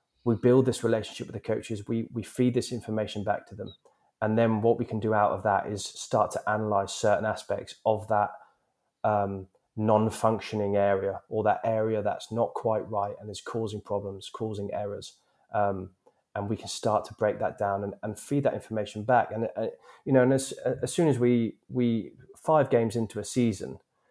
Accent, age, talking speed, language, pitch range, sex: British, 20-39, 195 wpm, English, 105-115 Hz, male